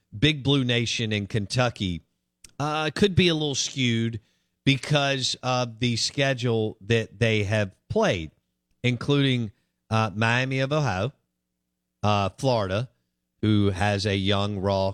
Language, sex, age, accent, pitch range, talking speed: English, male, 50-69, American, 95-125 Hz, 125 wpm